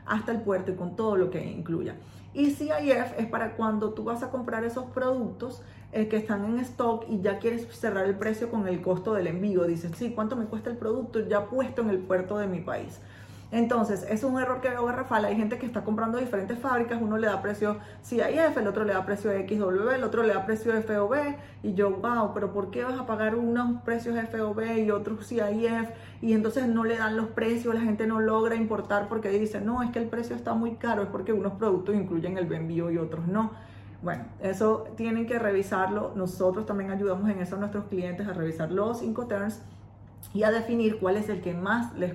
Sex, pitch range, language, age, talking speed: female, 195-230 Hz, Spanish, 30-49, 225 wpm